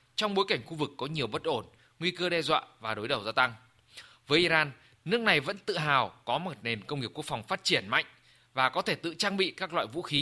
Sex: male